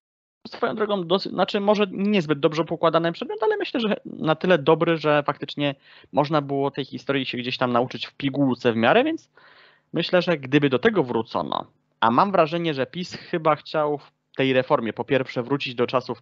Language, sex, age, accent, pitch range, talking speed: Polish, male, 20-39, native, 115-145 Hz, 190 wpm